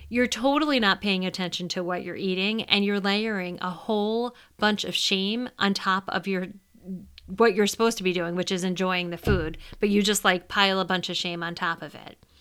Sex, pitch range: female, 180-210 Hz